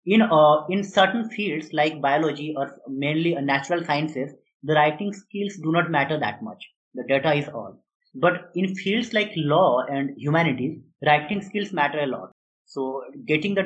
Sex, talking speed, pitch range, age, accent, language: male, 170 wpm, 145-195 Hz, 20-39, Indian, English